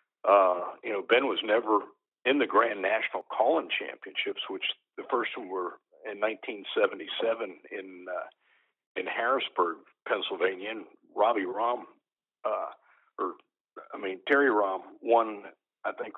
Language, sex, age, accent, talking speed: English, male, 50-69, American, 135 wpm